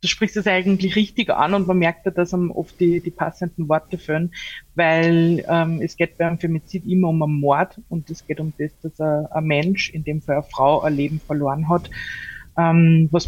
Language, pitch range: German, 155-180 Hz